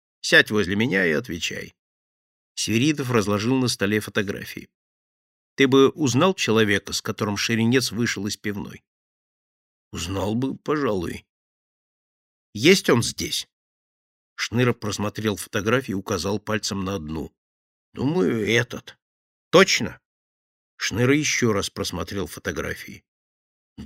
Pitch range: 100-130 Hz